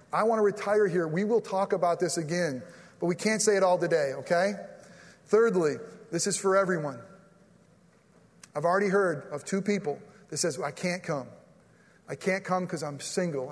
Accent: American